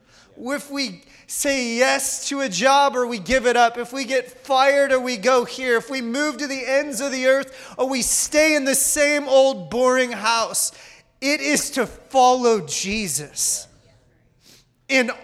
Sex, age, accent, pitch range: male, 30-49, American, 215-270 Hz